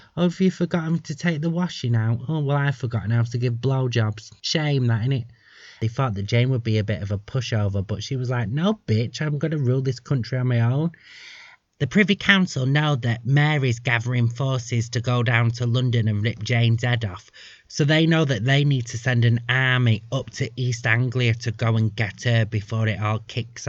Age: 30-49